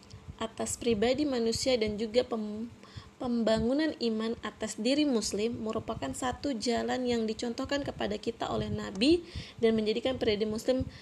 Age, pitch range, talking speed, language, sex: 20-39, 215-260 Hz, 125 wpm, Indonesian, female